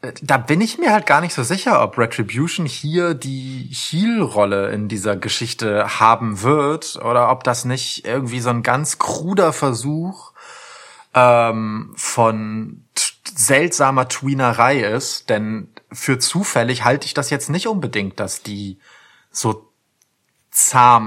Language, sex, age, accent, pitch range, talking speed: German, male, 30-49, German, 110-150 Hz, 135 wpm